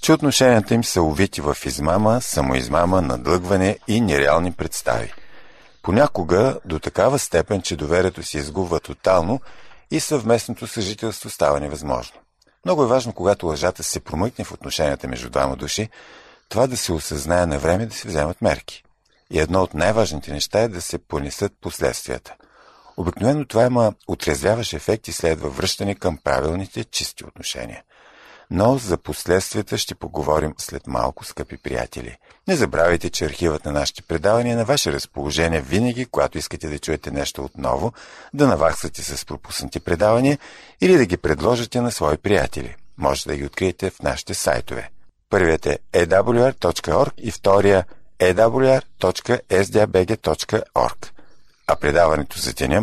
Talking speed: 145 wpm